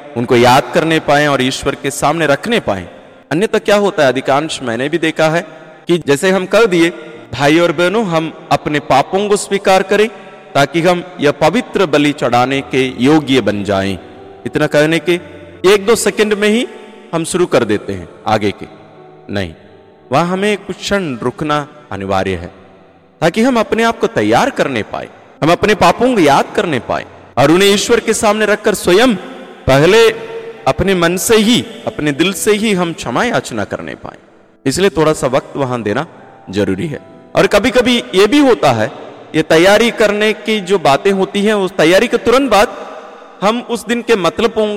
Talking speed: 180 wpm